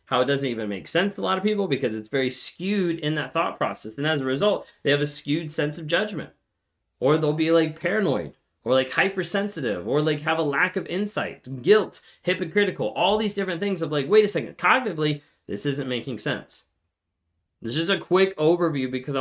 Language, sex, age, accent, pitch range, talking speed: English, male, 20-39, American, 130-175 Hz, 210 wpm